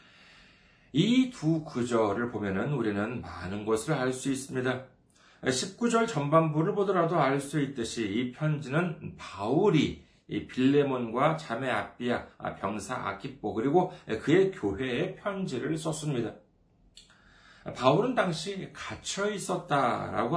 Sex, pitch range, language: male, 120-185 Hz, Korean